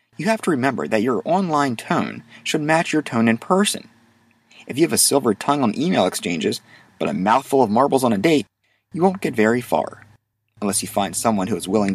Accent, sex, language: American, male, English